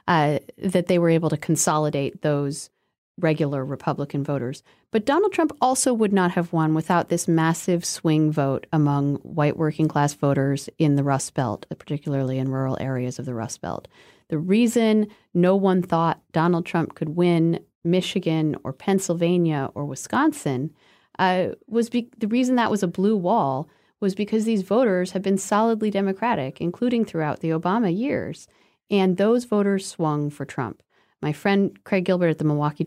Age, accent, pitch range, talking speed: 40-59, American, 145-190 Hz, 165 wpm